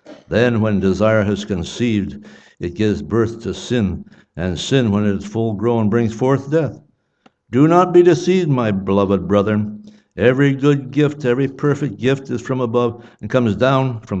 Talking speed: 170 wpm